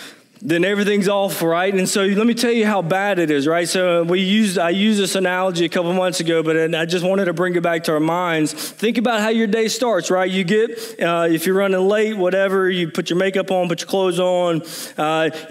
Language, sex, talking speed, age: English, male, 245 wpm, 20-39